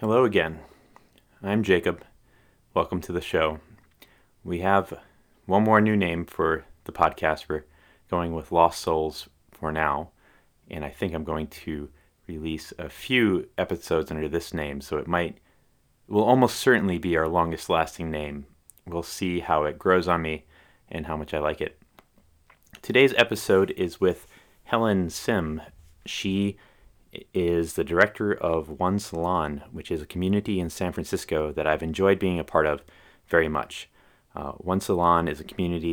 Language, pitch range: English, 80-95 Hz